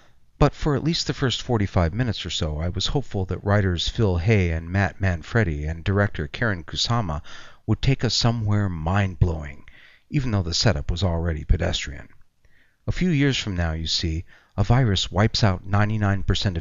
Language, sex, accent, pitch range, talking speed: English, male, American, 90-115 Hz, 175 wpm